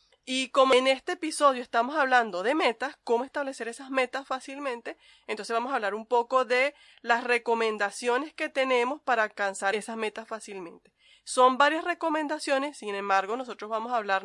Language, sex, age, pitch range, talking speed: Spanish, female, 20-39, 225-295 Hz, 165 wpm